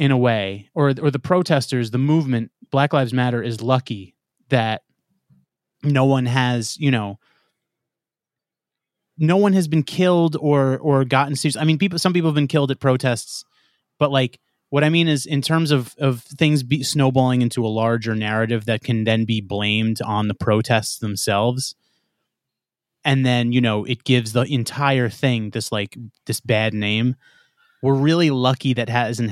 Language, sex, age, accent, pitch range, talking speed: English, male, 30-49, American, 115-145 Hz, 170 wpm